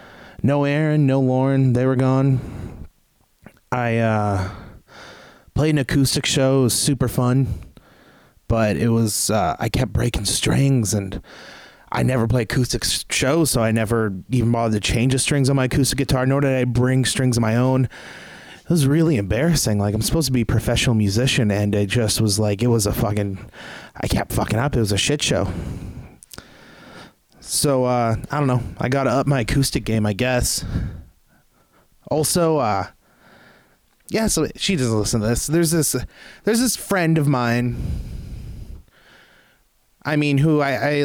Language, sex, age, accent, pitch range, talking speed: English, male, 20-39, American, 115-145 Hz, 170 wpm